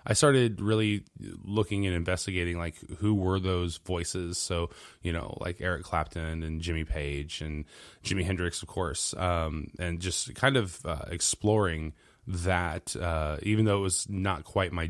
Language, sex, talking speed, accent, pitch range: English, male, 165 wpm, American, 85-100 Hz